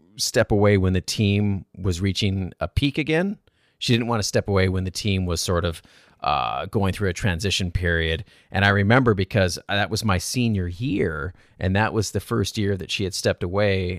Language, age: English, 30-49